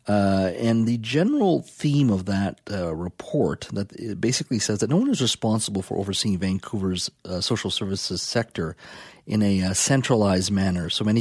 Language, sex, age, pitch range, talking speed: English, male, 40-59, 95-120 Hz, 165 wpm